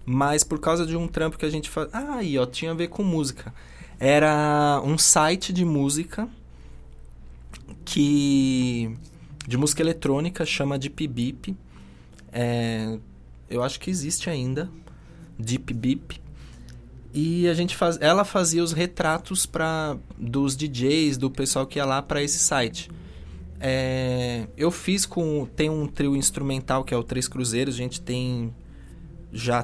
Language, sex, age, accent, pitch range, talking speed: Portuguese, male, 20-39, Brazilian, 125-165 Hz, 150 wpm